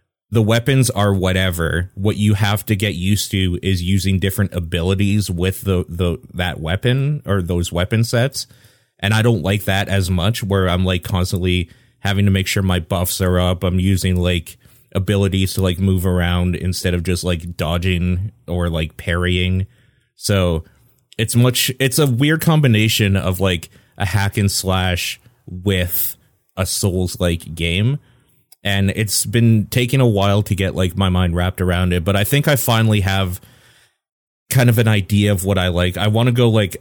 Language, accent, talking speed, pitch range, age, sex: English, American, 180 wpm, 90-105 Hz, 30-49, male